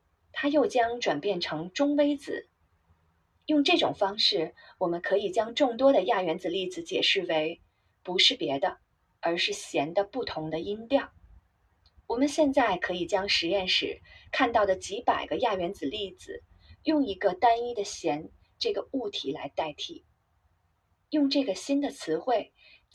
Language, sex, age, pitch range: Chinese, female, 30-49, 160-265 Hz